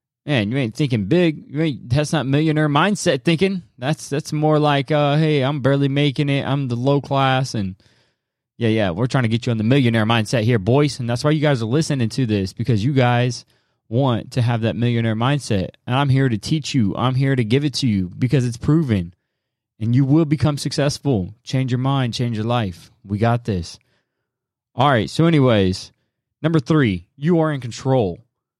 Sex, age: male, 20-39